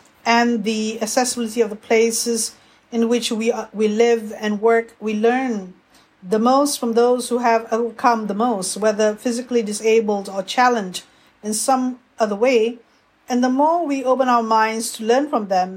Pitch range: 210-245 Hz